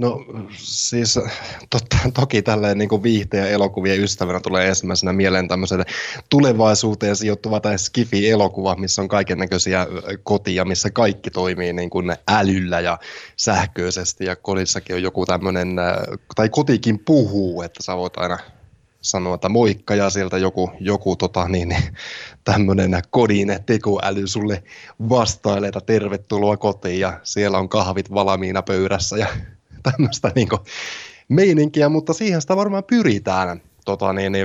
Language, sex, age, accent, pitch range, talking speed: Finnish, male, 20-39, native, 95-115 Hz, 125 wpm